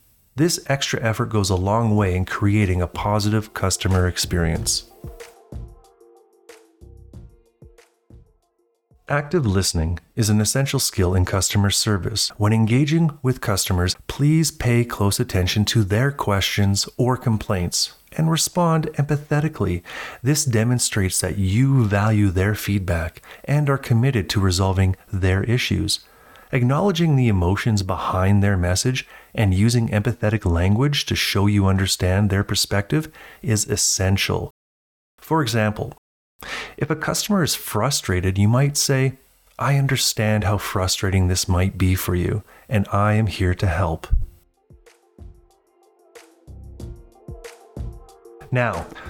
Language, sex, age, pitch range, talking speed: English, male, 30-49, 95-130 Hz, 115 wpm